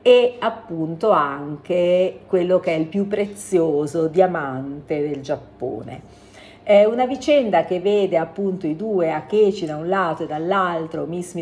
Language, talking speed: Italian, 140 wpm